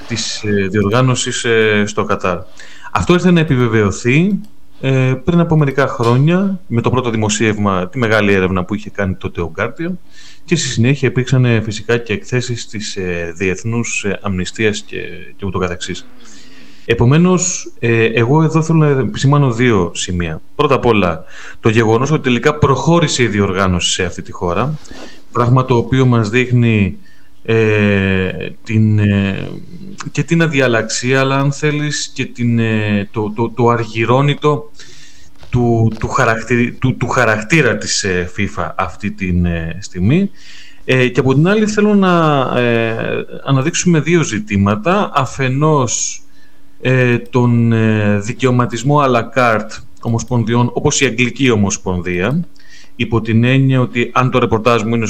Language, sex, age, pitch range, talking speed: Greek, male, 30-49, 105-135 Hz, 120 wpm